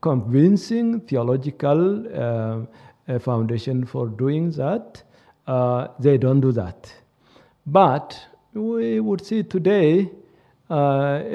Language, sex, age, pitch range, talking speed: Danish, male, 60-79, 130-175 Hz, 95 wpm